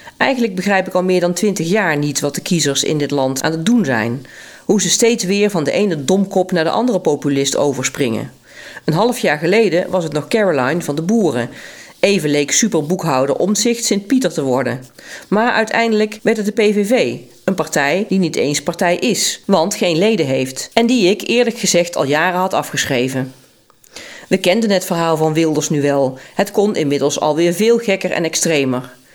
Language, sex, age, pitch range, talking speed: Dutch, female, 40-59, 150-205 Hz, 190 wpm